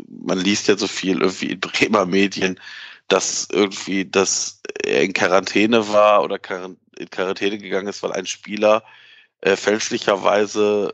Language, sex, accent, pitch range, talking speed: German, male, German, 95-110 Hz, 145 wpm